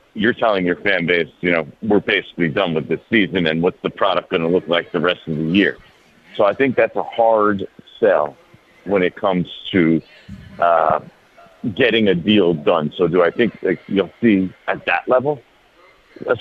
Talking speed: 190 wpm